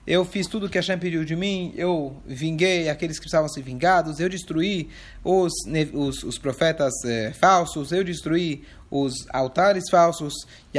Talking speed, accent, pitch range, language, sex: 155 wpm, Brazilian, 145-195 Hz, Portuguese, male